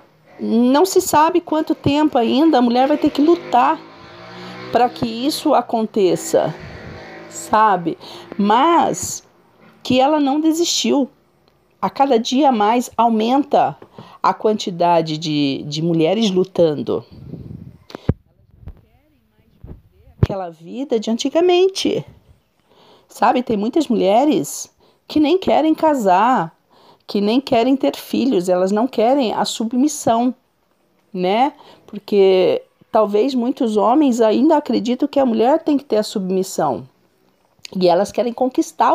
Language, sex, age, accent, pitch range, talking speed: Portuguese, female, 40-59, Brazilian, 200-285 Hz, 115 wpm